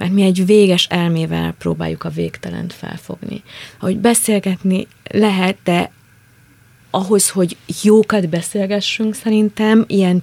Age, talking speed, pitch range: 30-49, 110 wpm, 170-190 Hz